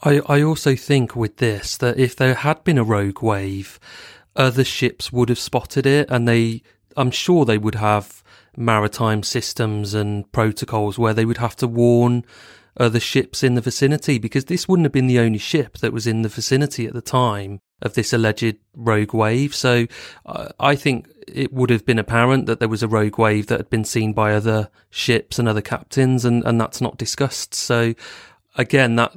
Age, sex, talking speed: 30-49, male, 195 wpm